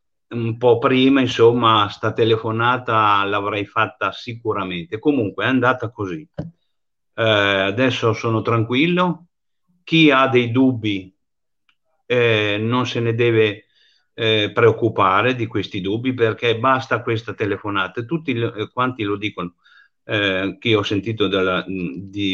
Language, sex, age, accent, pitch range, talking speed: Italian, male, 50-69, native, 100-125 Hz, 120 wpm